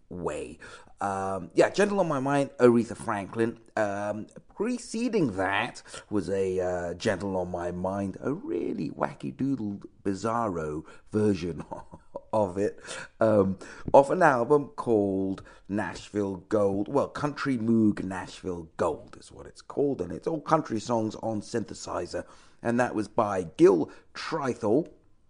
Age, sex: 40-59, male